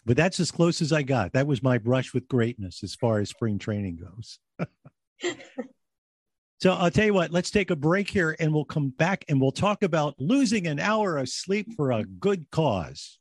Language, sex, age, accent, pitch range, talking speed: English, male, 50-69, American, 110-160 Hz, 210 wpm